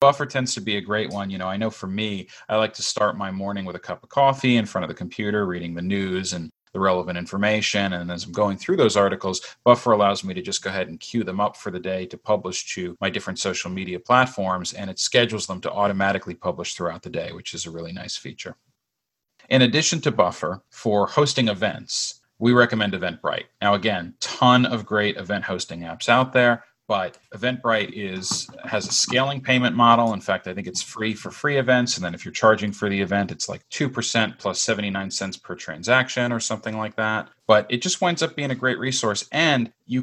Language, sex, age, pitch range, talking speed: English, male, 40-59, 100-125 Hz, 225 wpm